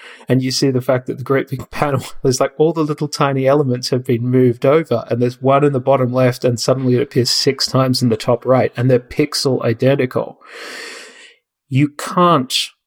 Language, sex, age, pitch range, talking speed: English, male, 30-49, 125-145 Hz, 205 wpm